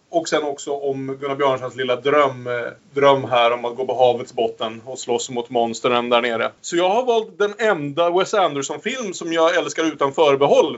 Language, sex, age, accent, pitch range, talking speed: Swedish, male, 30-49, Norwegian, 120-155 Hz, 200 wpm